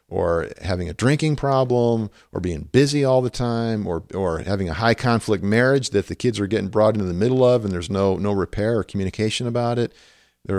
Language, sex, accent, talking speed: English, male, American, 210 wpm